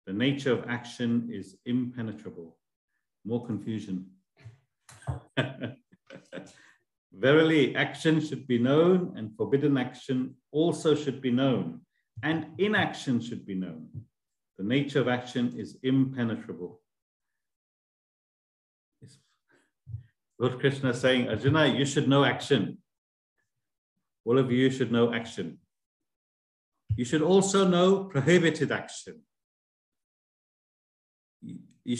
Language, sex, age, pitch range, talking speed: English, male, 50-69, 105-140 Hz, 100 wpm